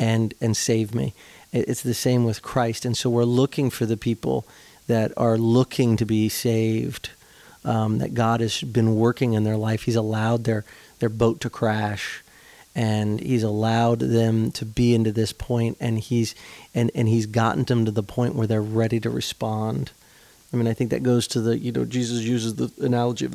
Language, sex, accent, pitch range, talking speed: English, male, American, 115-125 Hz, 200 wpm